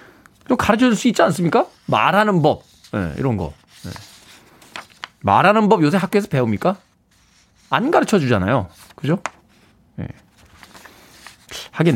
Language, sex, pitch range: Korean, male, 105-165 Hz